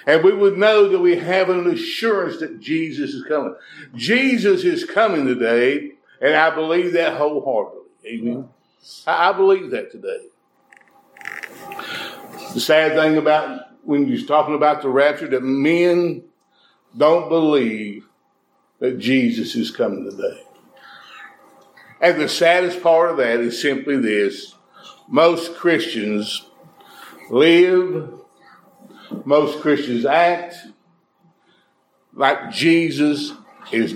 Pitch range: 150-245 Hz